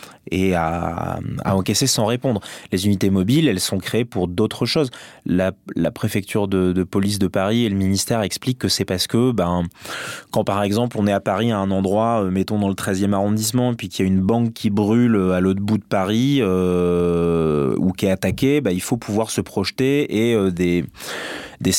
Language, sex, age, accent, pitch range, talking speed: French, male, 20-39, French, 95-120 Hz, 210 wpm